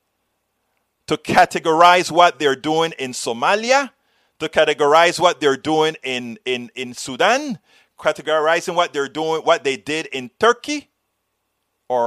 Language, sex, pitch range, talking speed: English, male, 135-180 Hz, 130 wpm